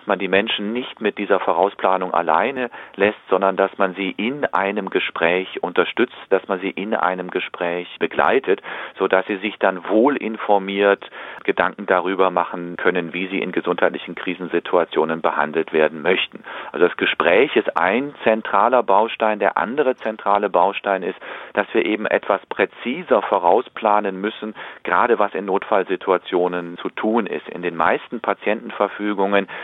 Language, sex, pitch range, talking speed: German, male, 90-105 Hz, 150 wpm